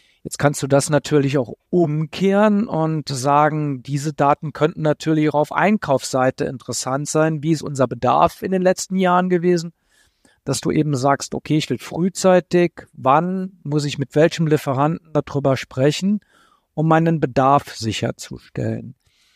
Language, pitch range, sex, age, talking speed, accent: German, 135-160 Hz, male, 50-69, 145 wpm, German